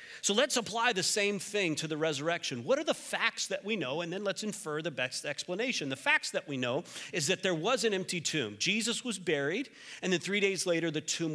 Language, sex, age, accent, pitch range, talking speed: English, male, 40-59, American, 150-215 Hz, 240 wpm